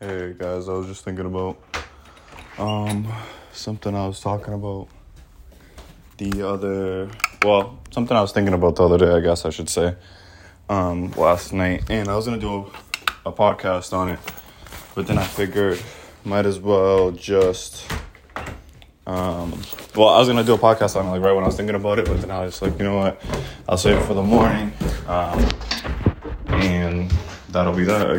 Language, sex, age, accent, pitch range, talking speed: English, male, 20-39, American, 90-105 Hz, 190 wpm